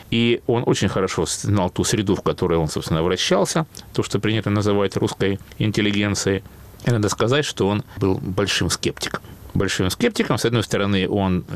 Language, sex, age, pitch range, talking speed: Russian, male, 30-49, 95-120 Hz, 165 wpm